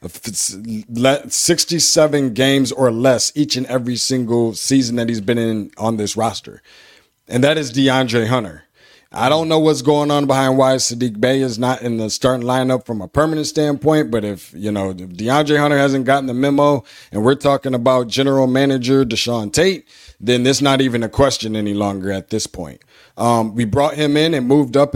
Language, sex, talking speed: English, male, 190 wpm